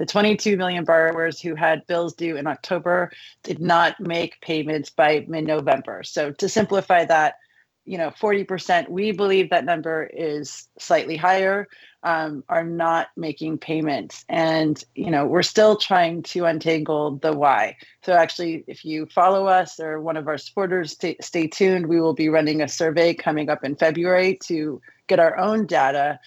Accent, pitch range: American, 160-185 Hz